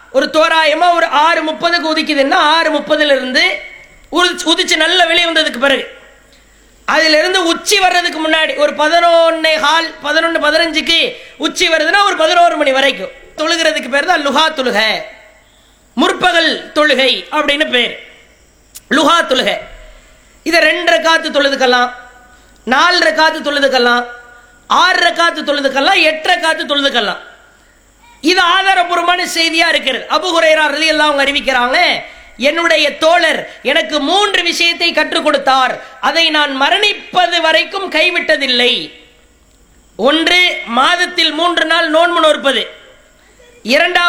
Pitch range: 295-345 Hz